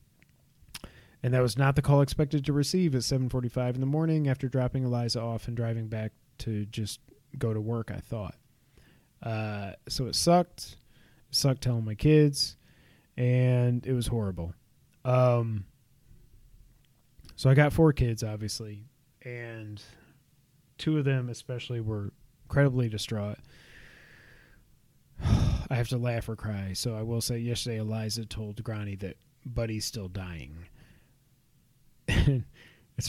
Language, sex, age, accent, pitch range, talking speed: English, male, 30-49, American, 110-135 Hz, 135 wpm